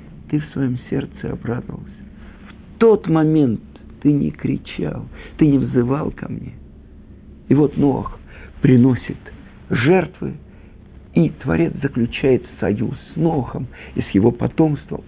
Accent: native